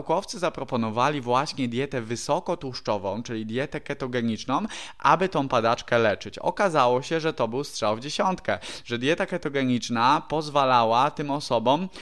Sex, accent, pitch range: male, native, 120-145 Hz